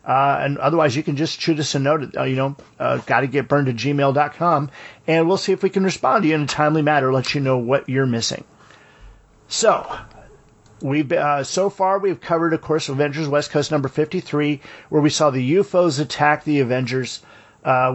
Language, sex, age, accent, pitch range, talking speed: English, male, 40-59, American, 135-165 Hz, 205 wpm